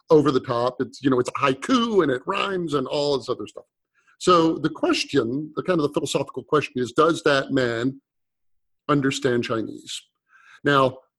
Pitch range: 130-165 Hz